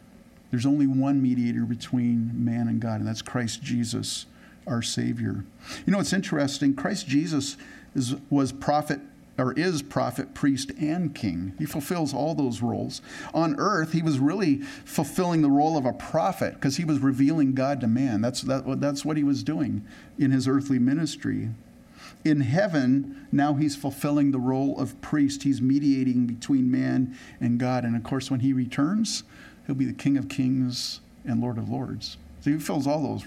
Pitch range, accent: 130-155 Hz, American